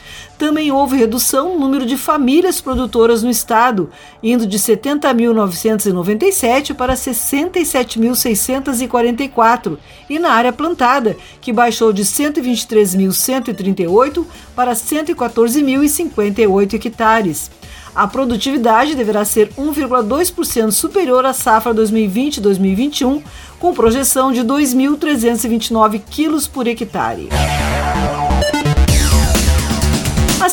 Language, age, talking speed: Portuguese, 50-69, 85 wpm